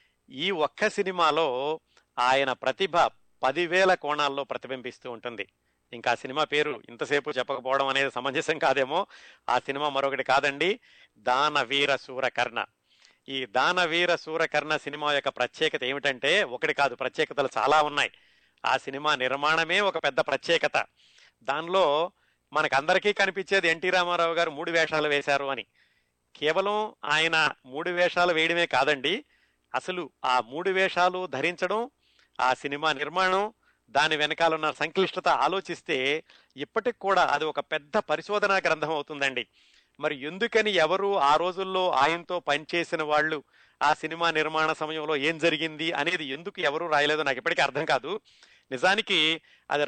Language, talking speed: Telugu, 125 wpm